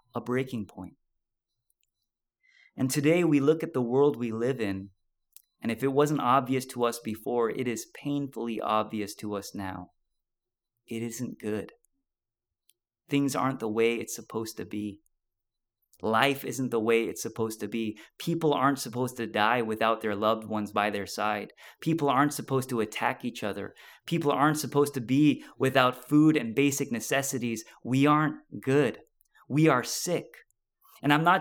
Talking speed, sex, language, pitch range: 160 wpm, male, English, 115-150 Hz